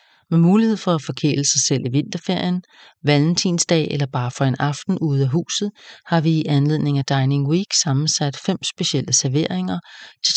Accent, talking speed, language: Danish, 175 wpm, English